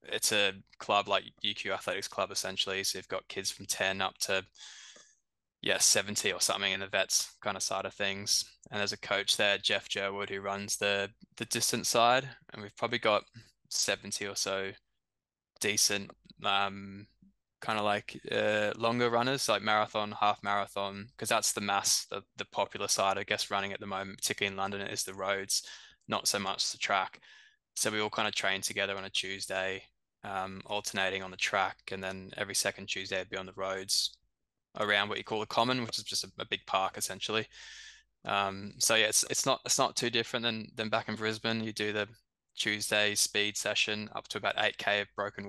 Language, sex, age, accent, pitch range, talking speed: English, male, 10-29, Australian, 95-105 Hz, 200 wpm